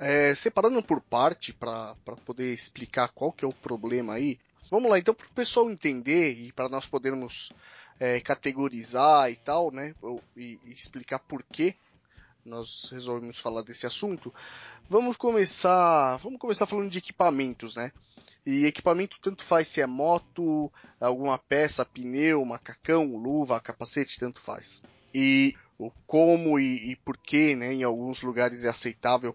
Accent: Brazilian